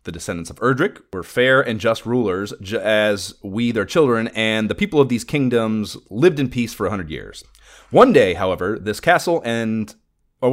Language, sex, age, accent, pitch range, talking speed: English, male, 30-49, American, 105-145 Hz, 195 wpm